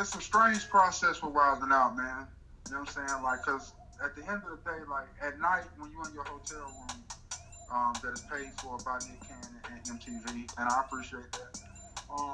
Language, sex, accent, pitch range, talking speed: English, male, American, 105-140 Hz, 215 wpm